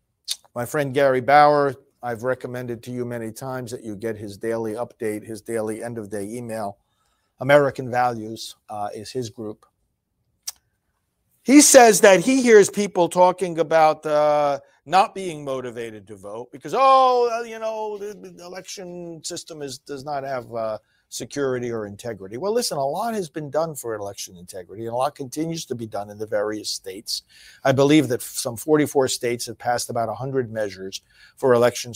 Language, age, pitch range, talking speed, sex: English, 50-69, 115-155 Hz, 165 wpm, male